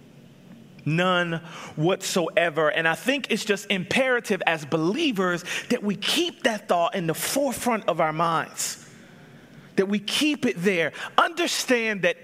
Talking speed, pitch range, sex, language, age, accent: 135 wpm, 180-250 Hz, male, English, 30-49, American